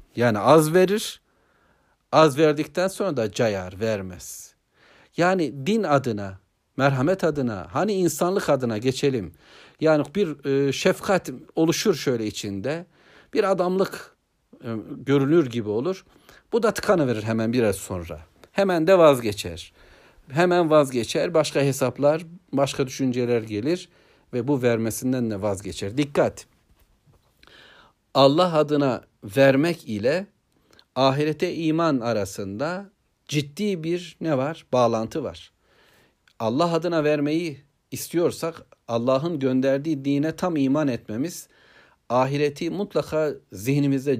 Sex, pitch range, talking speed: male, 120-160 Hz, 105 wpm